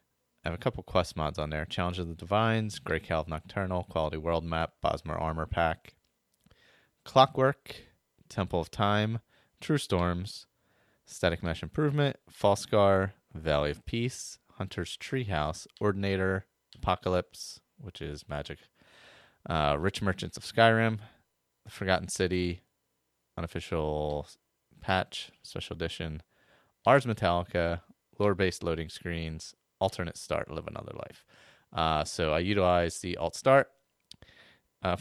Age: 30-49